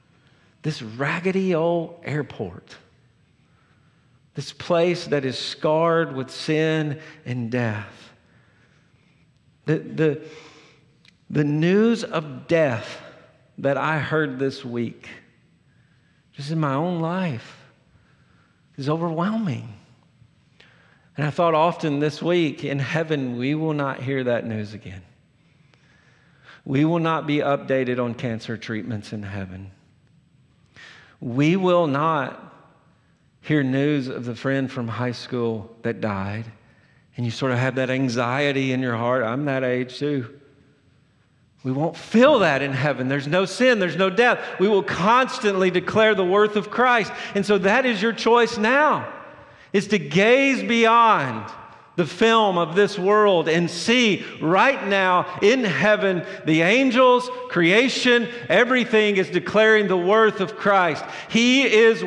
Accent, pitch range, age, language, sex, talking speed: American, 135-195 Hz, 50-69, English, male, 130 wpm